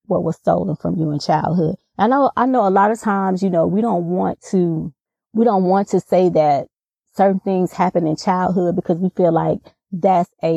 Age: 30-49